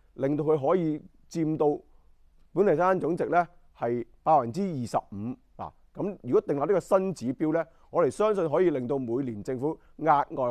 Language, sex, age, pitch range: Chinese, male, 30-49, 110-155 Hz